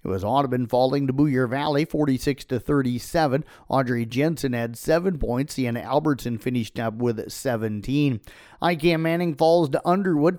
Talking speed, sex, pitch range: 150 wpm, male, 120-150 Hz